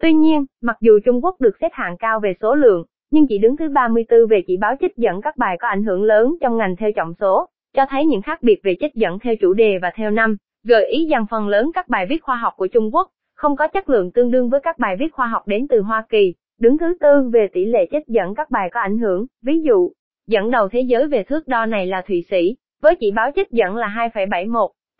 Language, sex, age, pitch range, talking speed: Vietnamese, female, 20-39, 205-270 Hz, 265 wpm